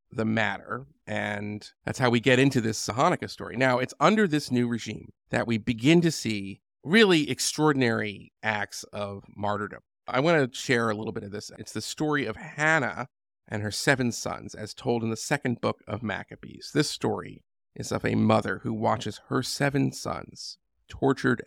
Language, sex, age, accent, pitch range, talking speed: English, male, 40-59, American, 105-135 Hz, 180 wpm